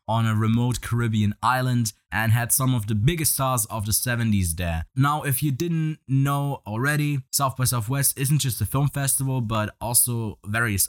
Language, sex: English, male